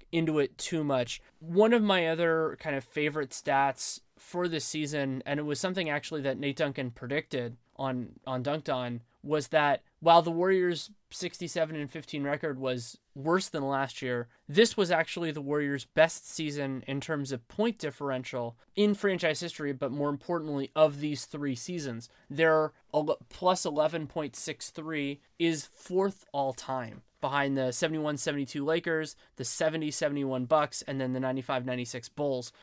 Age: 20-39